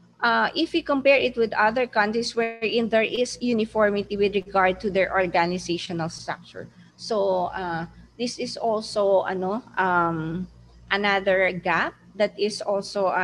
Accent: native